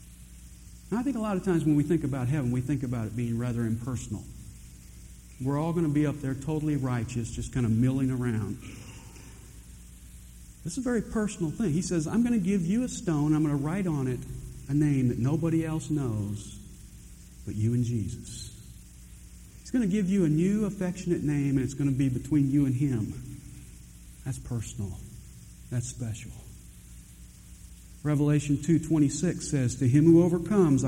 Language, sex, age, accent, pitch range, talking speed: English, male, 50-69, American, 115-160 Hz, 180 wpm